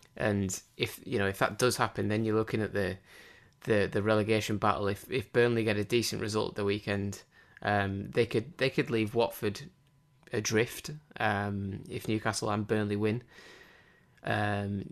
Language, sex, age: English, male, 20-39